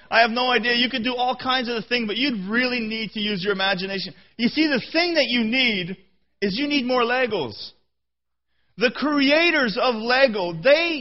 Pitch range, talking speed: 180-250 Hz, 195 wpm